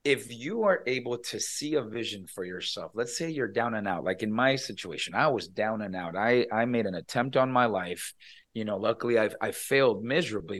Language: English